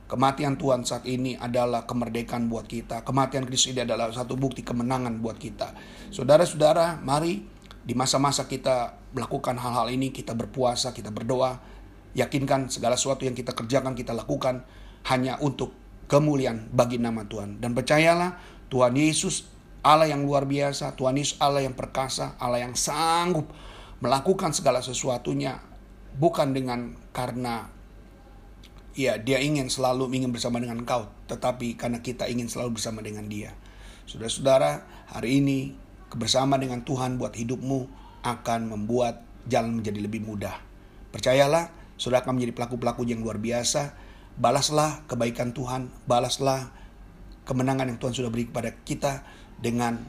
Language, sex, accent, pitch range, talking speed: Indonesian, male, native, 115-135 Hz, 140 wpm